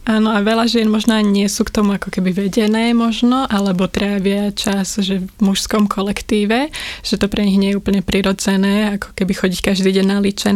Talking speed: 195 wpm